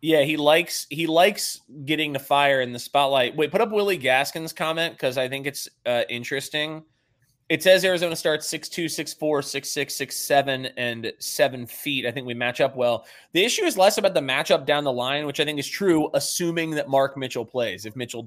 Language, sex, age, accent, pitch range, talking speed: English, male, 20-39, American, 125-160 Hz, 205 wpm